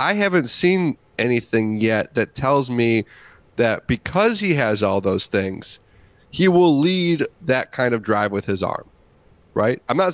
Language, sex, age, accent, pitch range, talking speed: English, male, 30-49, American, 115-155 Hz, 165 wpm